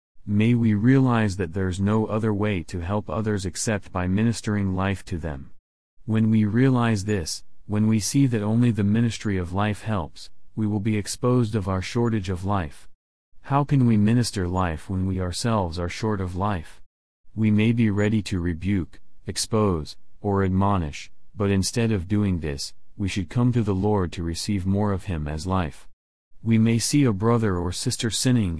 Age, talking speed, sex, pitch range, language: 40-59, 185 wpm, male, 90-110 Hz, English